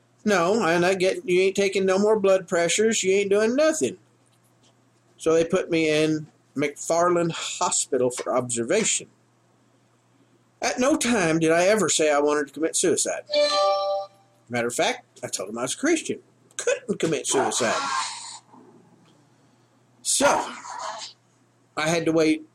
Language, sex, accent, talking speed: English, male, American, 140 wpm